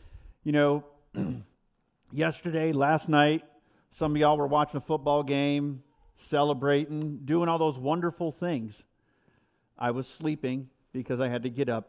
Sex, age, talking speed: male, 50-69, 140 wpm